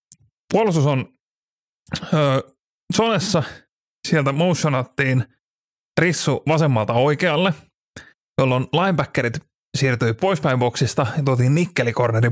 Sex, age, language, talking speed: male, 30-49, Finnish, 85 wpm